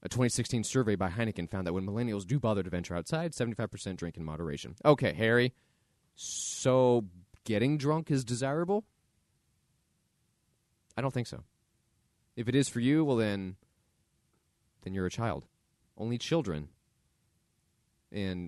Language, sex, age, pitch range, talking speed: English, male, 30-49, 95-125 Hz, 140 wpm